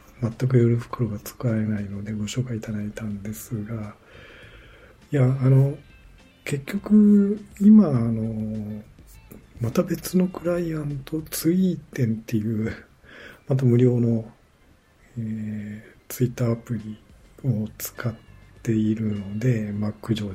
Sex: male